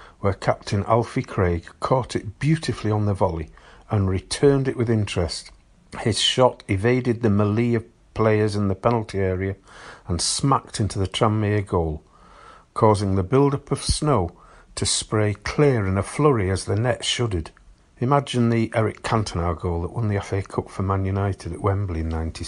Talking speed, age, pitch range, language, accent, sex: 170 wpm, 50-69, 95-125 Hz, English, British, male